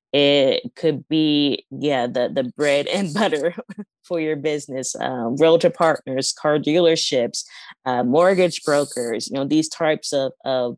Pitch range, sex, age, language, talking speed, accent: 140-160 Hz, female, 20-39, English, 145 wpm, American